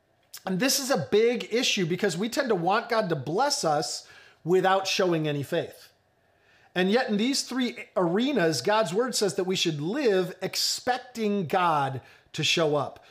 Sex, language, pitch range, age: male, English, 145-205 Hz, 40-59